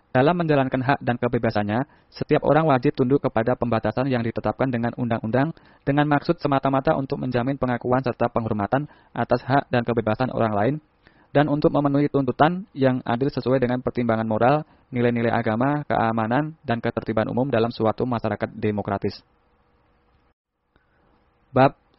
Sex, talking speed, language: male, 135 wpm, Indonesian